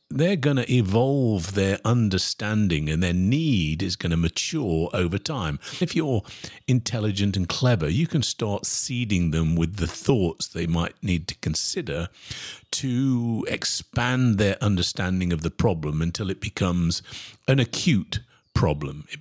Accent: British